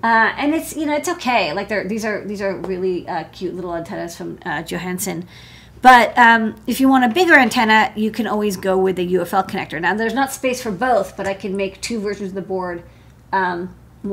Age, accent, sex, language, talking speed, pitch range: 30-49, American, female, English, 225 wpm, 195-240 Hz